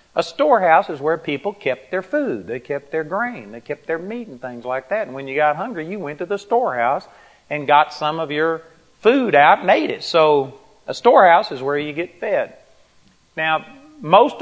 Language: English